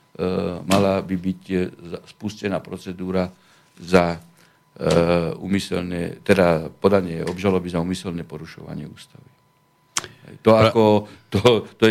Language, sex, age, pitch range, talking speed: Slovak, male, 50-69, 95-120 Hz, 90 wpm